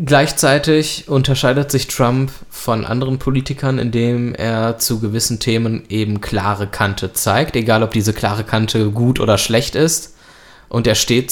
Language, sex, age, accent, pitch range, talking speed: German, male, 20-39, German, 105-125 Hz, 150 wpm